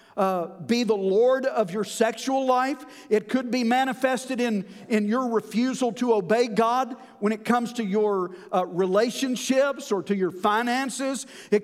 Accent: American